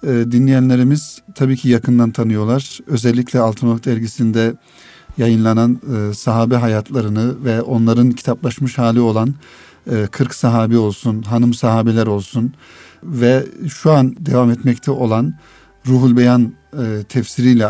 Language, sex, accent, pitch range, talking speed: Turkish, male, native, 115-125 Hz, 105 wpm